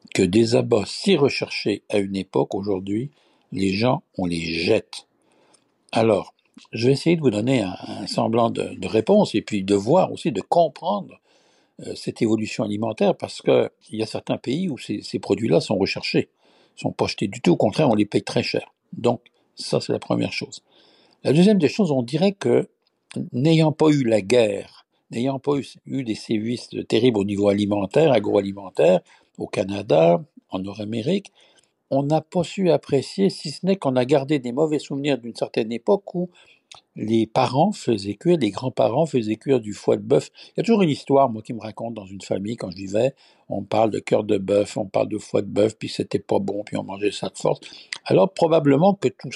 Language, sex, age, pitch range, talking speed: French, male, 60-79, 105-160 Hz, 205 wpm